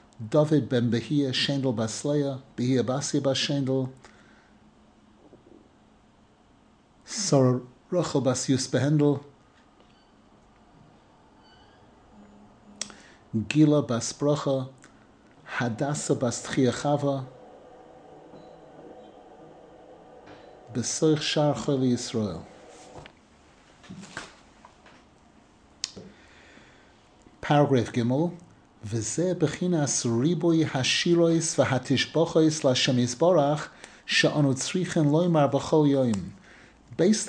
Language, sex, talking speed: English, male, 35 wpm